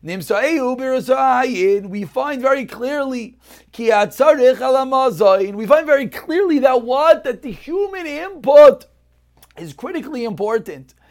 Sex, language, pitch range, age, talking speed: male, English, 230-285 Hz, 40-59, 90 wpm